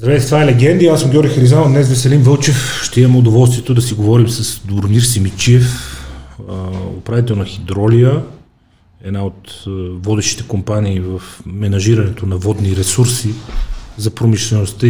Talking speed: 135 wpm